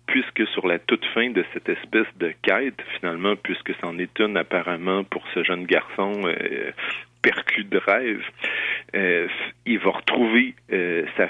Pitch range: 90-115 Hz